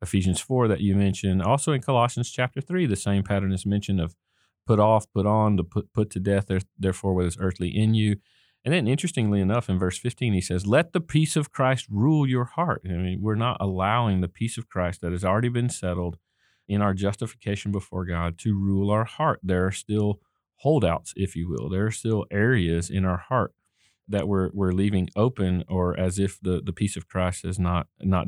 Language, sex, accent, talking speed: English, male, American, 215 wpm